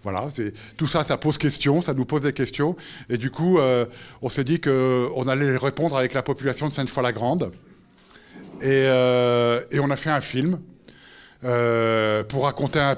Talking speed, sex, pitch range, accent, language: 180 wpm, male, 130-170 Hz, French, French